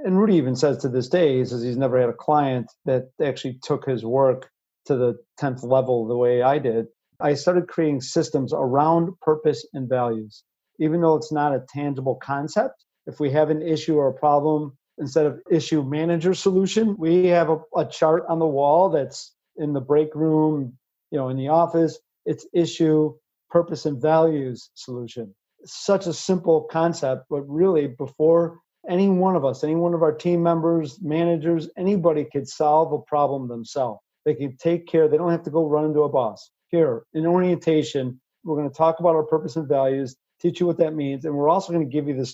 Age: 50-69